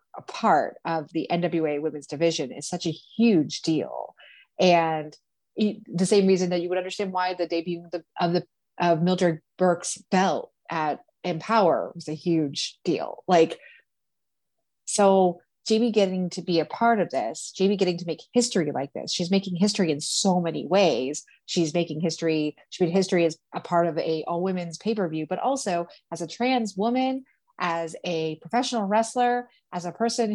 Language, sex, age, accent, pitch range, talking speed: English, female, 30-49, American, 165-210 Hz, 175 wpm